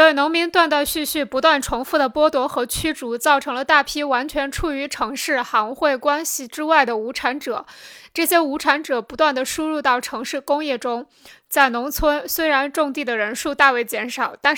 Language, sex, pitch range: Chinese, female, 245-300 Hz